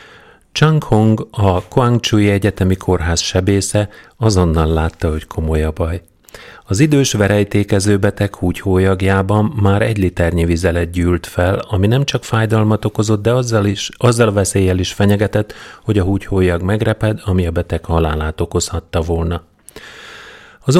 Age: 30-49